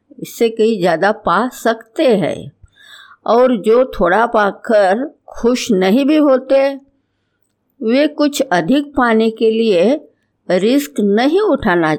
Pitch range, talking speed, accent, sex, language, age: 170-240 Hz, 120 wpm, native, female, Hindi, 60-79